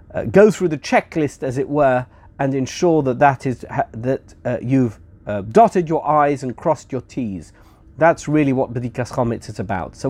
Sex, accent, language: male, British, English